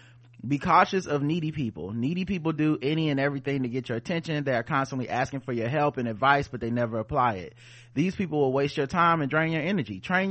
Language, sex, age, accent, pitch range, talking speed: English, male, 30-49, American, 125-160 Hz, 235 wpm